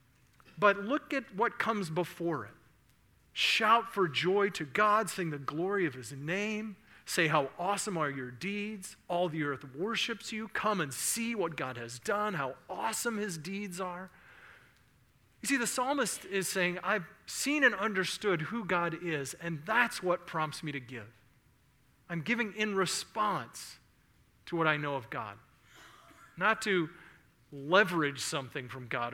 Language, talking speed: English, 160 wpm